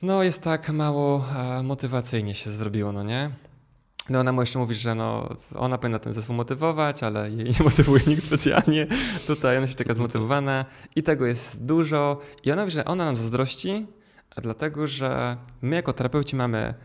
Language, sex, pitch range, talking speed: Polish, male, 120-155 Hz, 180 wpm